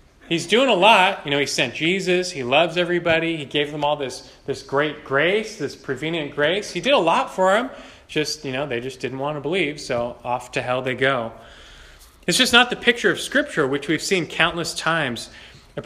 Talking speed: 215 wpm